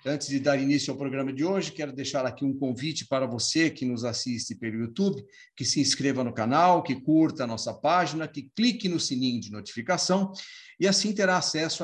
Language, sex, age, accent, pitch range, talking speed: Portuguese, male, 50-69, Brazilian, 135-185 Hz, 205 wpm